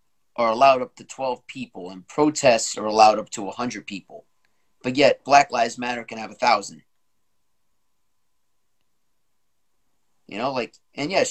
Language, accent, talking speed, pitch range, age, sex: English, American, 150 wpm, 105-140 Hz, 30-49, male